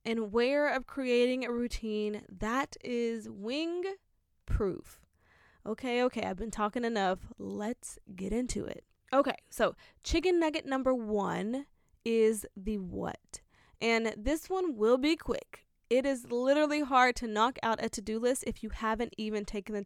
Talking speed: 155 wpm